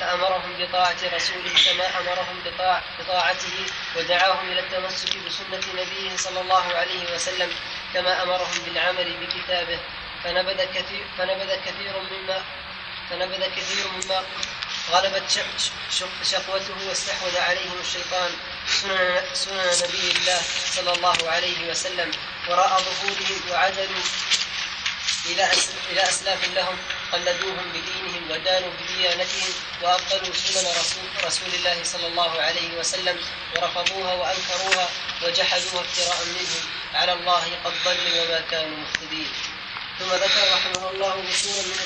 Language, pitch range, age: Arabic, 180-185 Hz, 10-29